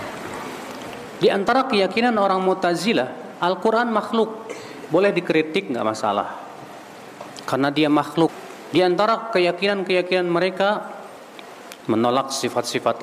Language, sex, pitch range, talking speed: Indonesian, male, 135-195 Hz, 90 wpm